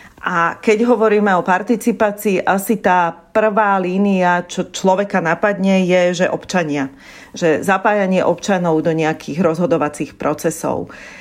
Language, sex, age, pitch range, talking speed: Slovak, female, 40-59, 170-210 Hz, 120 wpm